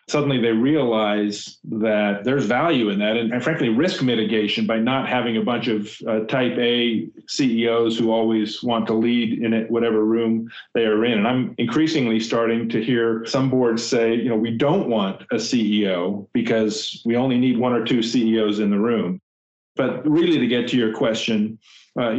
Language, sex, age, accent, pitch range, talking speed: English, male, 40-59, American, 110-125 Hz, 190 wpm